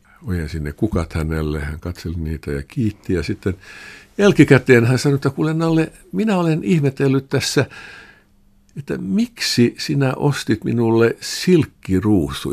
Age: 60-79